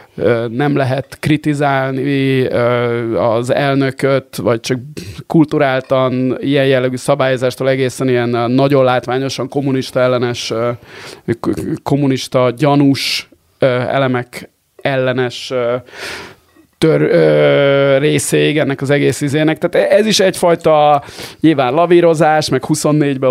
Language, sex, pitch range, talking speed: Hungarian, male, 130-145 Hz, 90 wpm